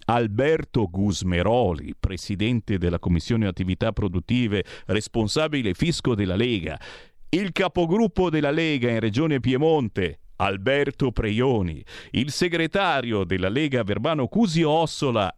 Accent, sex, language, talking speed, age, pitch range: native, male, Italian, 100 wpm, 40-59, 105-155 Hz